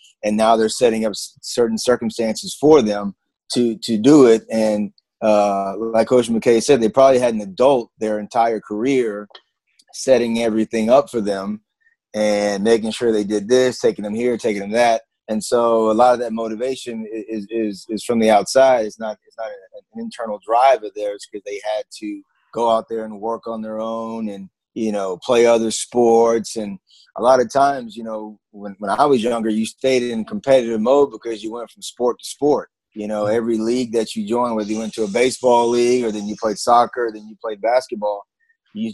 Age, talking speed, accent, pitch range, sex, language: 30-49, 205 wpm, American, 110-125 Hz, male, English